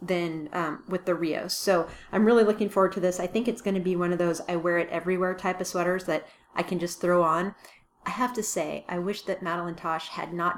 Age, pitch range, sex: 30-49, 175-210 Hz, female